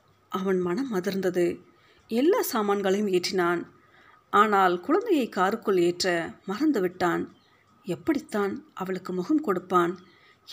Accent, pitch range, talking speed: native, 180-235 Hz, 90 wpm